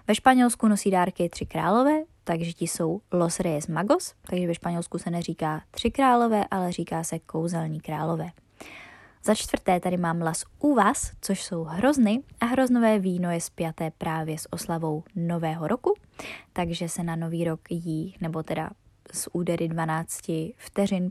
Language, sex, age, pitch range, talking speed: Czech, female, 20-39, 165-205 Hz, 155 wpm